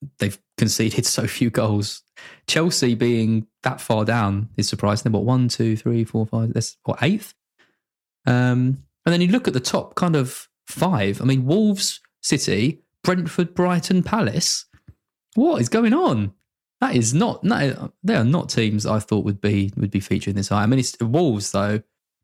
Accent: British